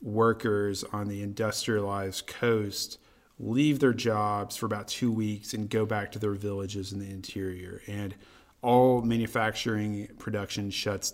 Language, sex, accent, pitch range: English, male, American, 100-115 Hz